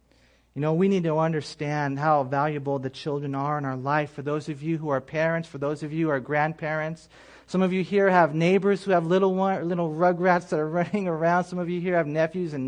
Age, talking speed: 40-59, 235 wpm